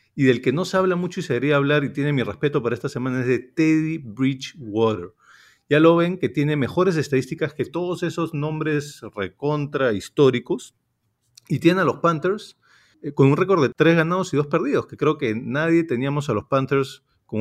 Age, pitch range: 40-59, 120-160 Hz